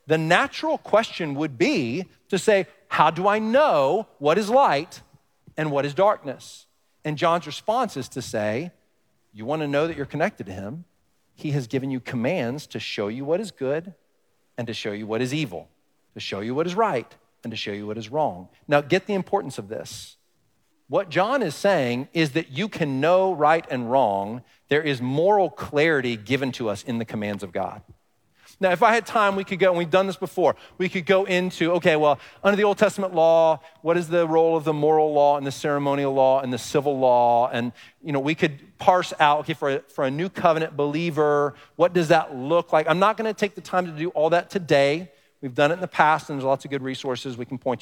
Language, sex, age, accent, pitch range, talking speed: English, male, 40-59, American, 135-180 Hz, 225 wpm